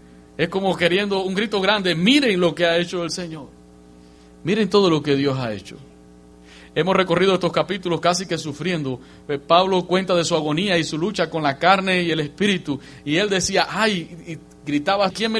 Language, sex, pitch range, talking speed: English, male, 140-185 Hz, 185 wpm